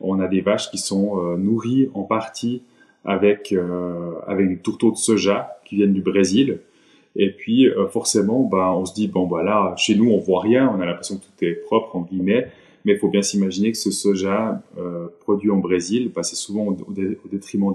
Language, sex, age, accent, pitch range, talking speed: French, male, 20-39, French, 95-110 Hz, 220 wpm